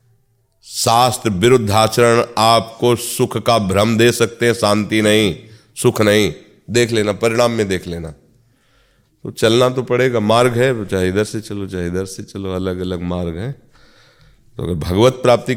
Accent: native